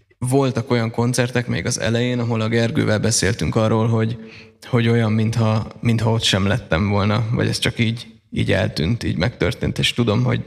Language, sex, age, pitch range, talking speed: Hungarian, male, 20-39, 105-115 Hz, 180 wpm